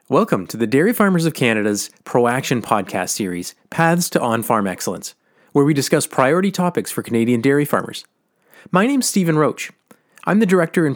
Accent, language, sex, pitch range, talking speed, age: American, English, male, 120-170 Hz, 175 wpm, 30-49